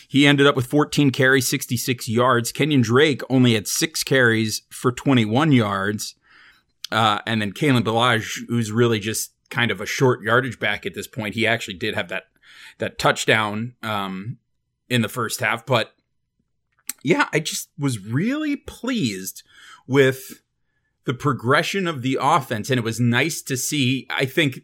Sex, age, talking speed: male, 30-49, 165 wpm